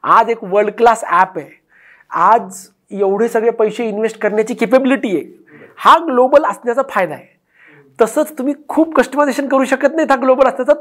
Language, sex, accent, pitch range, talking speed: Marathi, male, native, 195-240 Hz, 160 wpm